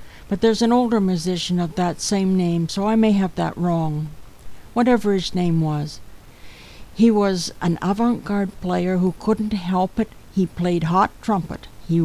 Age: 60-79